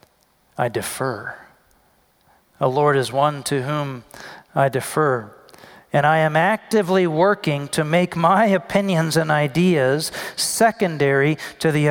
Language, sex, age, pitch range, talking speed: English, male, 40-59, 165-230 Hz, 120 wpm